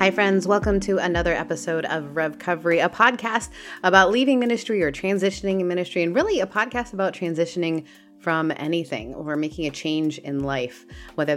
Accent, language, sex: American, English, female